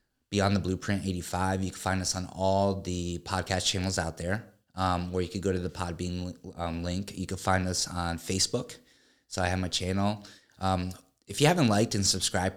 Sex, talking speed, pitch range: male, 205 wpm, 90-105 Hz